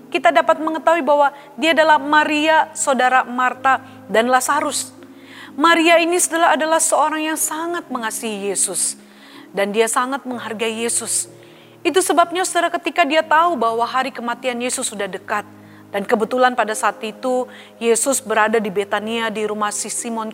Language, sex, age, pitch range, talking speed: Indonesian, female, 30-49, 220-290 Hz, 145 wpm